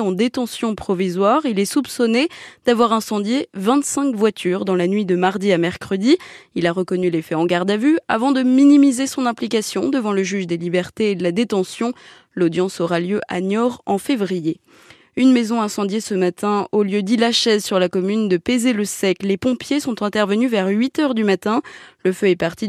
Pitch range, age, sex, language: 185-255 Hz, 20-39, female, French